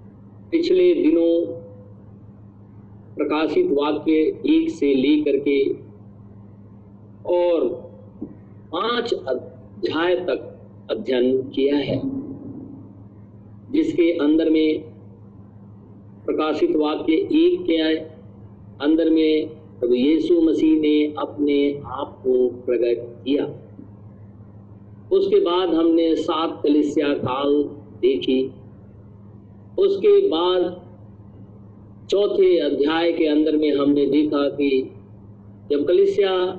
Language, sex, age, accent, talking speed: Hindi, male, 50-69, native, 85 wpm